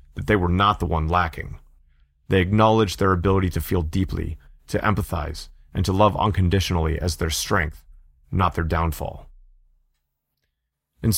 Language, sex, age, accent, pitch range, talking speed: English, male, 30-49, American, 75-100 Hz, 145 wpm